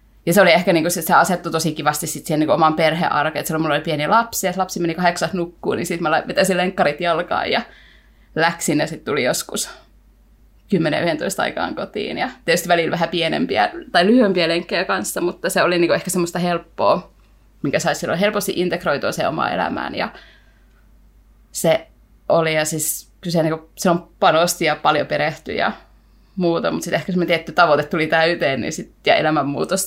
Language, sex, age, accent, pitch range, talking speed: Finnish, female, 20-39, native, 160-180 Hz, 175 wpm